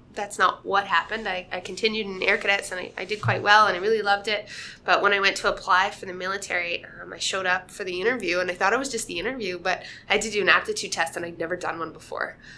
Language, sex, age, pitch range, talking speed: English, female, 20-39, 180-235 Hz, 280 wpm